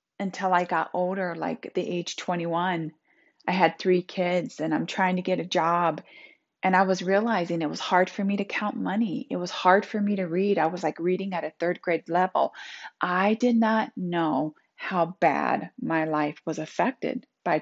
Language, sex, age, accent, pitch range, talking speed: English, female, 30-49, American, 165-195 Hz, 200 wpm